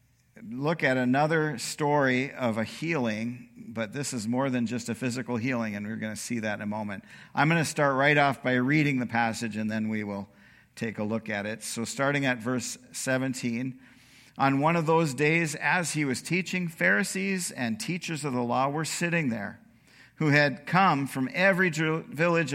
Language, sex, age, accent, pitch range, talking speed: English, male, 50-69, American, 120-165 Hz, 195 wpm